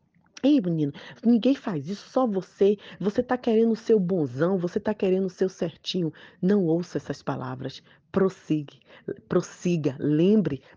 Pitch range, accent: 145-185 Hz, Brazilian